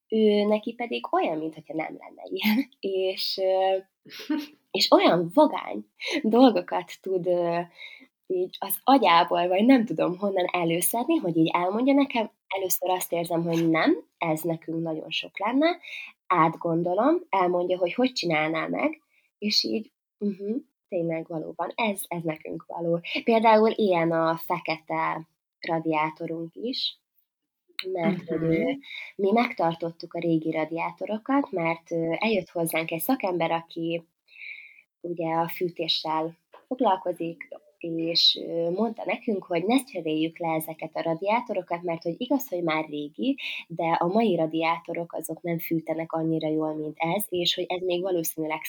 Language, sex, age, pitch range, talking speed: Hungarian, female, 20-39, 165-220 Hz, 130 wpm